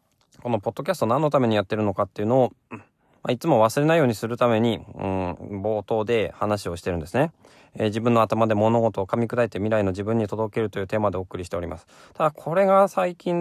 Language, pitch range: Japanese, 95-145 Hz